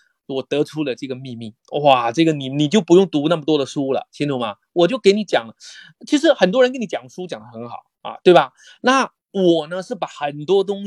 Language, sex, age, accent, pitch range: Chinese, male, 30-49, native, 140-195 Hz